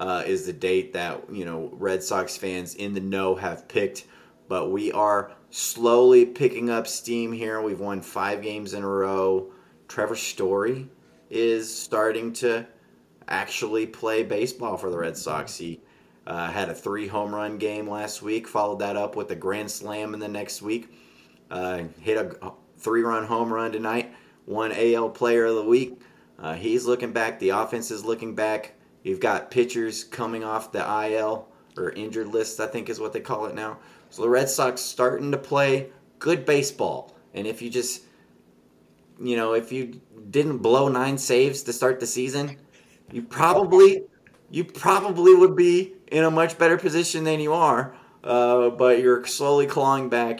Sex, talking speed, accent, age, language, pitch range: male, 175 wpm, American, 30-49, English, 100-125 Hz